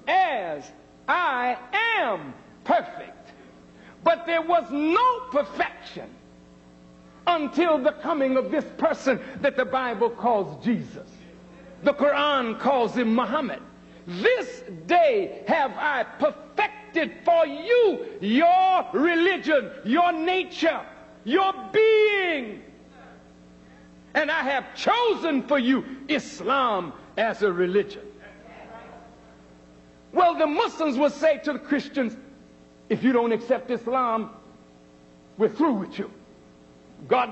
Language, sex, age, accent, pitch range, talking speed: English, male, 60-79, American, 205-330 Hz, 105 wpm